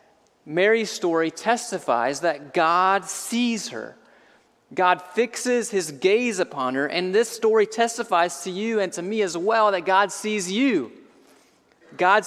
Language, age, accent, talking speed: English, 30-49, American, 140 wpm